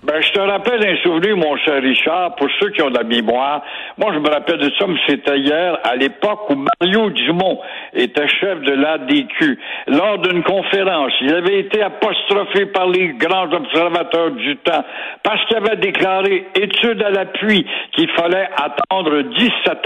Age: 60-79